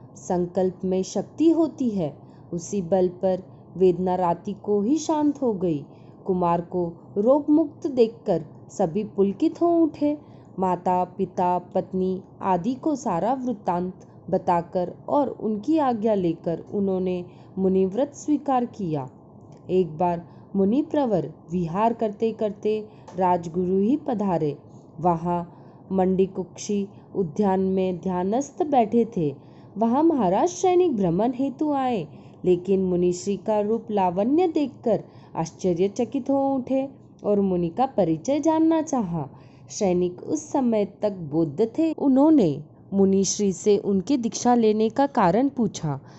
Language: Hindi